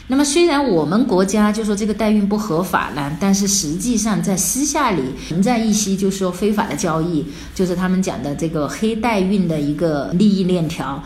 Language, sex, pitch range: Chinese, female, 175-235 Hz